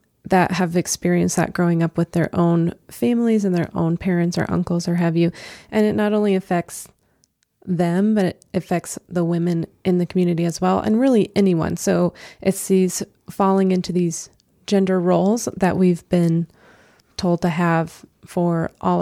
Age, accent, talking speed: 20-39, American, 170 wpm